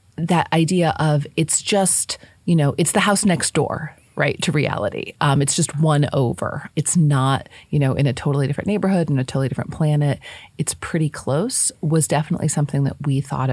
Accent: American